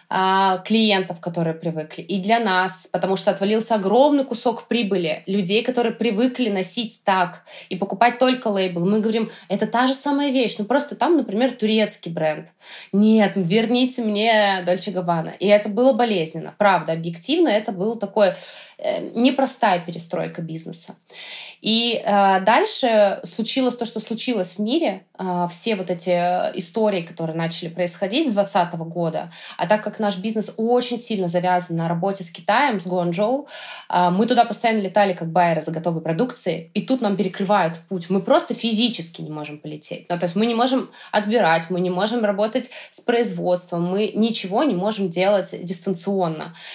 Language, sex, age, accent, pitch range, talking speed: Russian, female, 20-39, native, 180-230 Hz, 160 wpm